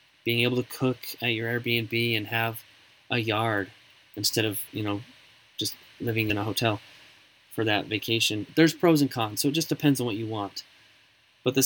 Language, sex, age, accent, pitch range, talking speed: English, male, 20-39, American, 110-130 Hz, 190 wpm